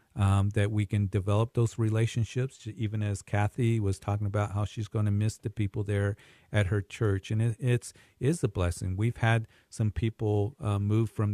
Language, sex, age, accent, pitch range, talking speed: English, male, 50-69, American, 100-120 Hz, 200 wpm